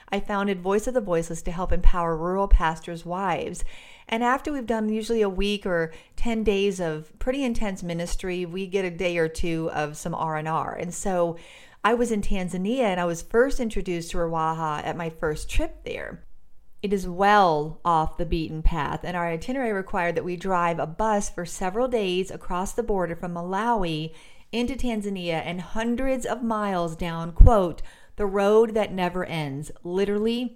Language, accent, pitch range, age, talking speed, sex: English, American, 170-220 Hz, 40-59, 180 wpm, female